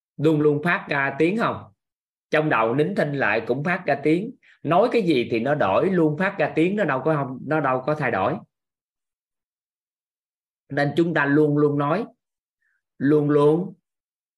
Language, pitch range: Vietnamese, 130-160 Hz